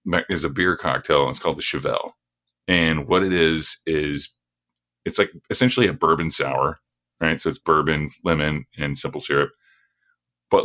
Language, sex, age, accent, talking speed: English, male, 30-49, American, 165 wpm